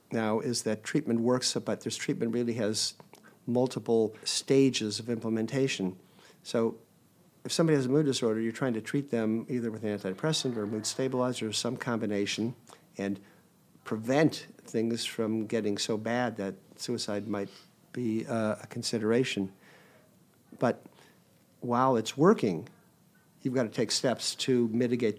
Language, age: English, 50-69